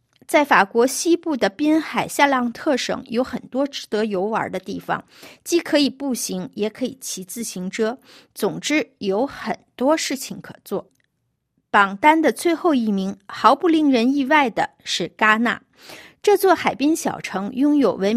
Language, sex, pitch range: Chinese, female, 215-300 Hz